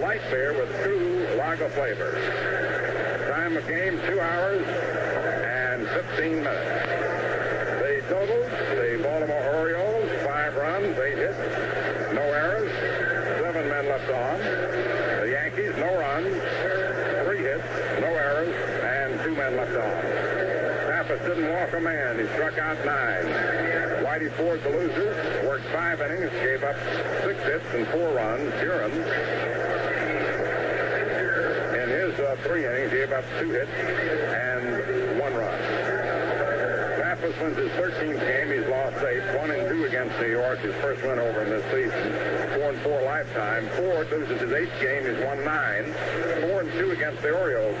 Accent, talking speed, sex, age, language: American, 140 wpm, male, 60-79, English